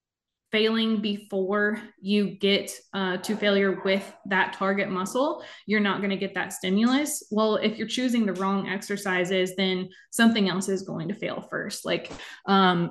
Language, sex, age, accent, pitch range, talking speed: English, female, 20-39, American, 185-210 Hz, 165 wpm